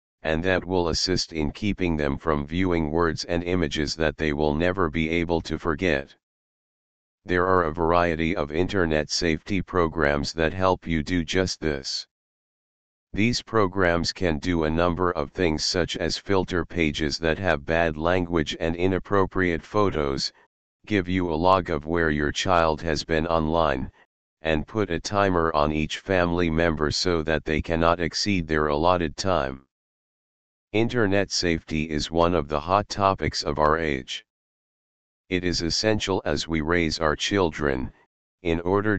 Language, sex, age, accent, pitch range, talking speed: English, male, 40-59, American, 75-90 Hz, 155 wpm